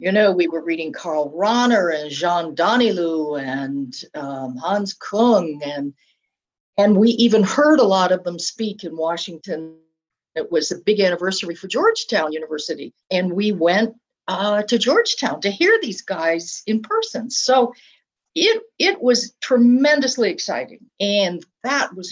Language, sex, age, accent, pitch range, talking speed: English, female, 60-79, American, 165-235 Hz, 150 wpm